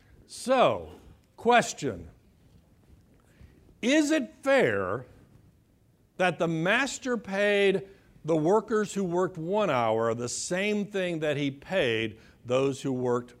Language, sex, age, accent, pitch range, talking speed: English, male, 60-79, American, 145-230 Hz, 105 wpm